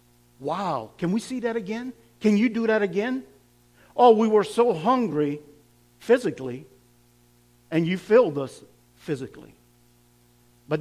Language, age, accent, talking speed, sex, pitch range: English, 50-69, American, 130 wpm, male, 130-200 Hz